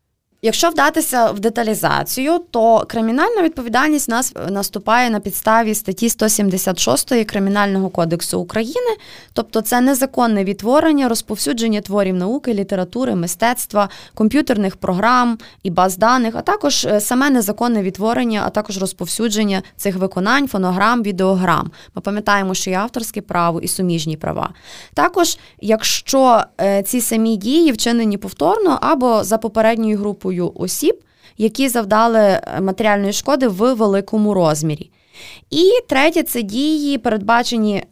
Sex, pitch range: female, 195-255 Hz